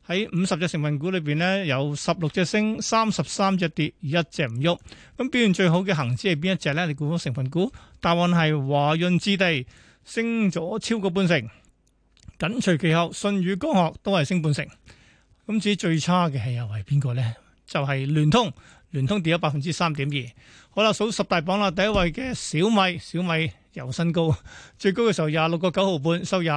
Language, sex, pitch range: Chinese, male, 155-190 Hz